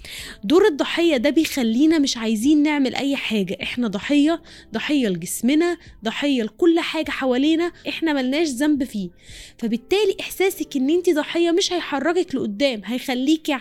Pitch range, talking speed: 220-305 Hz, 130 wpm